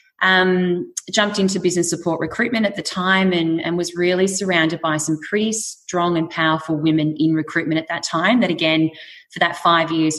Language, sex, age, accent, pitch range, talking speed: English, female, 20-39, Australian, 155-175 Hz, 190 wpm